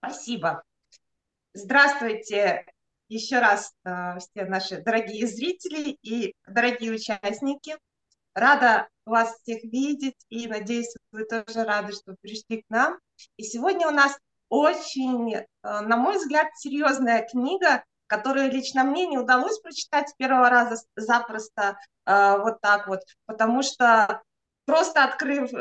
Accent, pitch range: native, 220-275 Hz